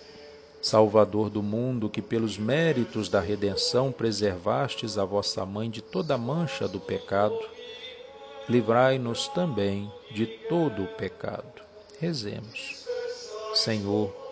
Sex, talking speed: male, 105 wpm